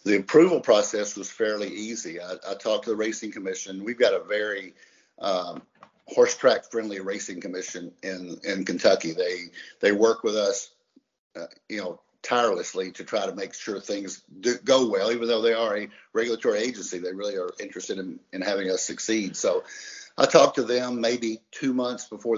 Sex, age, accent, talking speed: male, 50-69, American, 185 wpm